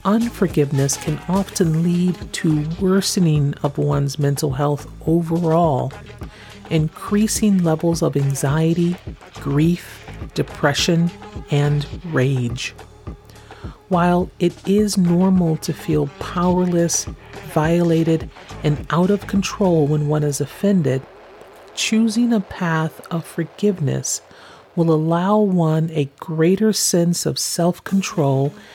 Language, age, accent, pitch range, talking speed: English, 40-59, American, 150-200 Hz, 100 wpm